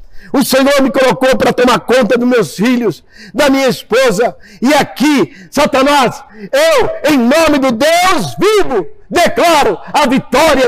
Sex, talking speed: male, 140 wpm